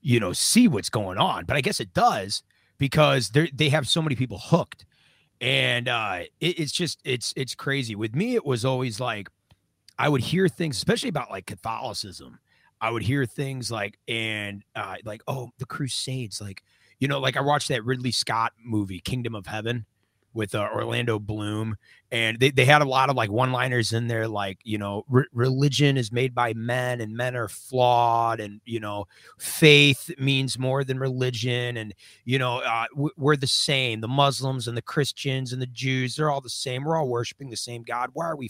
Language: English